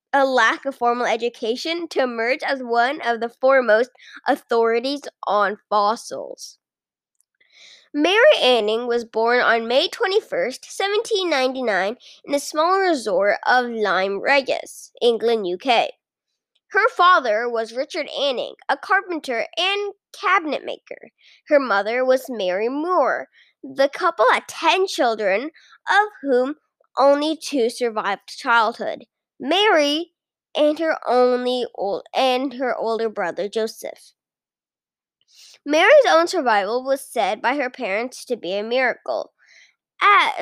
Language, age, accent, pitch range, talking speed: English, 10-29, American, 235-335 Hz, 120 wpm